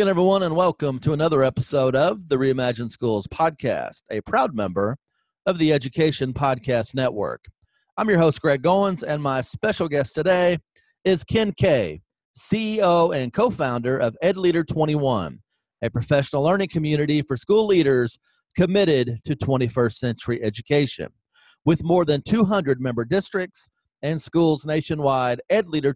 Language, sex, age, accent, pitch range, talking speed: English, male, 40-59, American, 130-175 Hz, 145 wpm